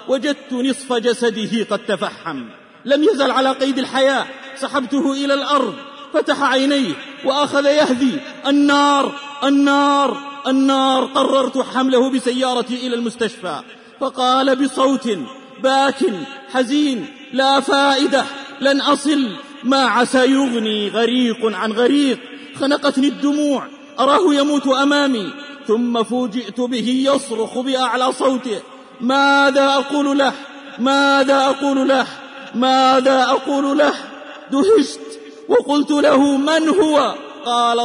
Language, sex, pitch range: Arabic, male, 245-275 Hz